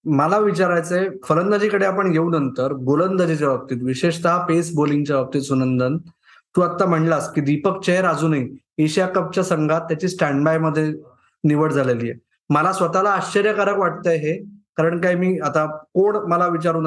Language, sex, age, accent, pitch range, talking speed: Marathi, male, 20-39, native, 155-200 Hz, 145 wpm